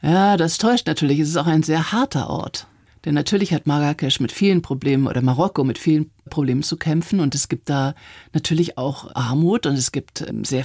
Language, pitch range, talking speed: German, 145-170 Hz, 205 wpm